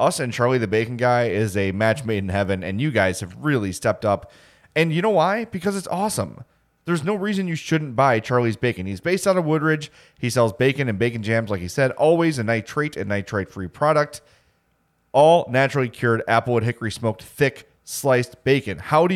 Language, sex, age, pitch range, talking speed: English, male, 30-49, 105-150 Hz, 205 wpm